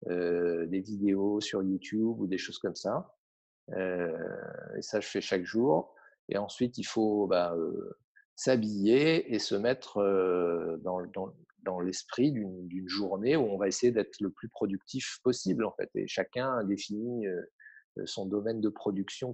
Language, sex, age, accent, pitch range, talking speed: French, male, 50-69, French, 95-125 Hz, 170 wpm